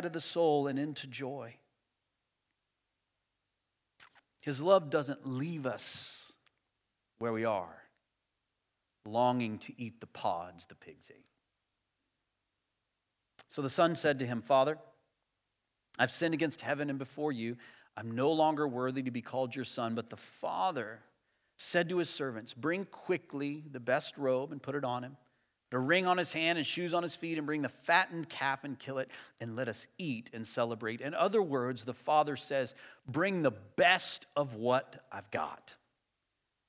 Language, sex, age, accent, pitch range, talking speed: English, male, 40-59, American, 115-155 Hz, 160 wpm